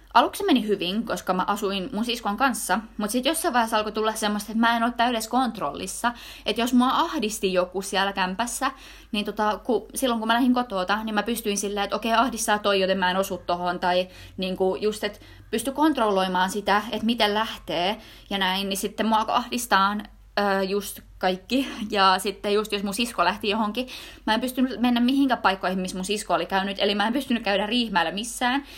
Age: 20-39